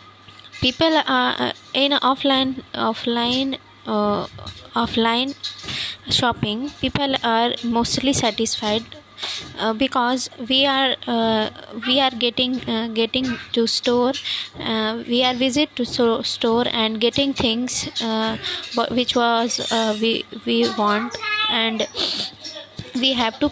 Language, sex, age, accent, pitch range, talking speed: Hindi, female, 20-39, native, 220-255 Hz, 120 wpm